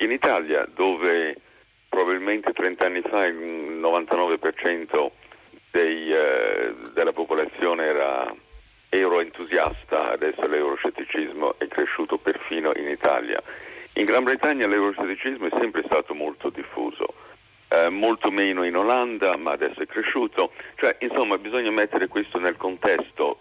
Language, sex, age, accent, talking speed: Italian, male, 50-69, native, 120 wpm